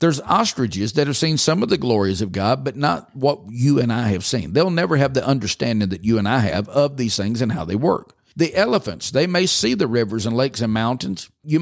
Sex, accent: male, American